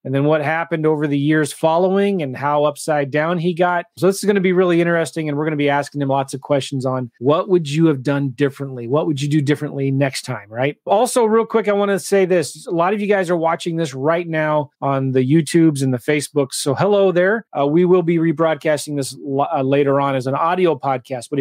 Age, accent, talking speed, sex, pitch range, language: 30-49, American, 240 wpm, male, 145-180 Hz, English